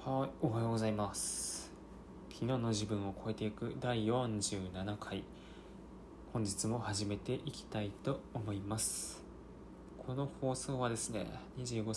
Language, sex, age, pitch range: Japanese, male, 20-39, 100-125 Hz